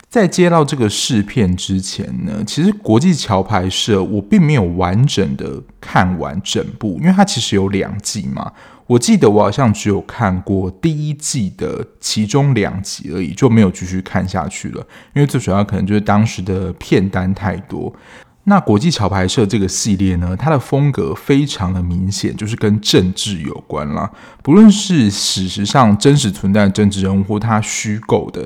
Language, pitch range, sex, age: Chinese, 95-120 Hz, male, 20-39